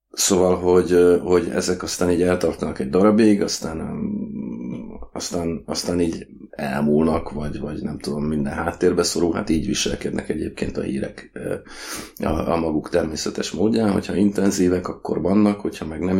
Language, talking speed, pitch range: Hungarian, 140 wpm, 80-95 Hz